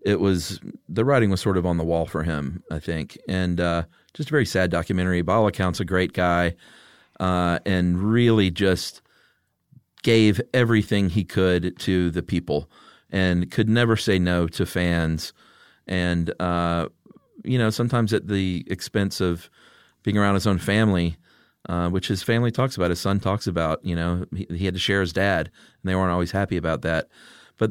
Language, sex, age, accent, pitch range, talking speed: English, male, 40-59, American, 85-110 Hz, 185 wpm